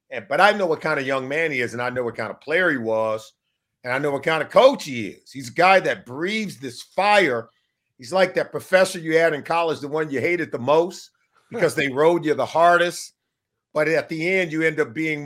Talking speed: 250 wpm